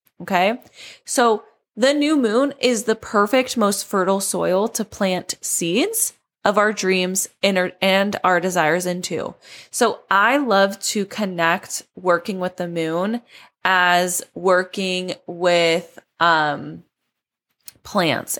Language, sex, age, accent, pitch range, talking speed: English, female, 20-39, American, 170-220 Hz, 115 wpm